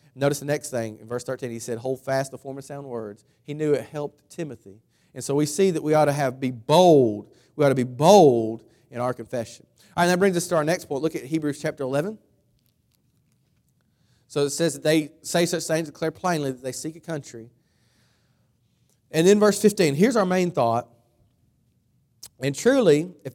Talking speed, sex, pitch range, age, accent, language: 210 wpm, male, 120-165 Hz, 40-59, American, English